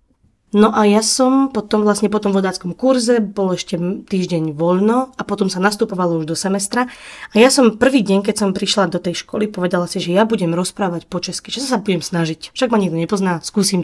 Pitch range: 180-215 Hz